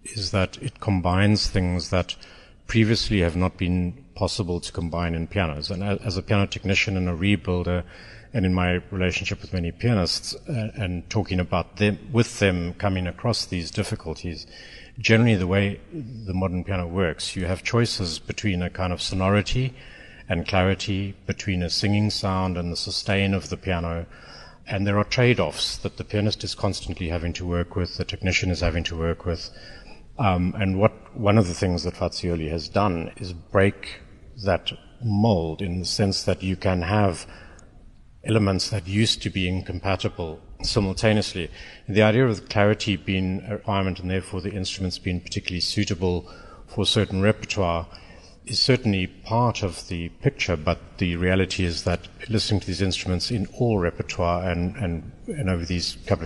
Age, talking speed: 50-69, 170 wpm